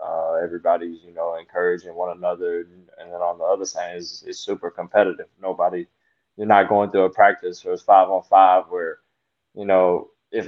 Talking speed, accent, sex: 190 wpm, American, male